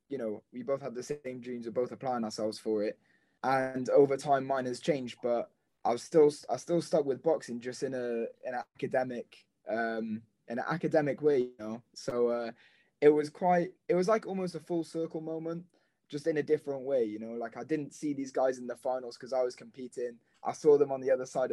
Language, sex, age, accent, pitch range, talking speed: English, male, 20-39, British, 115-145 Hz, 230 wpm